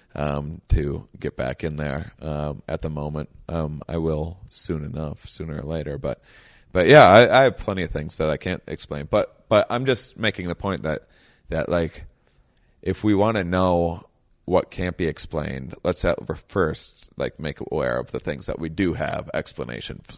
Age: 30-49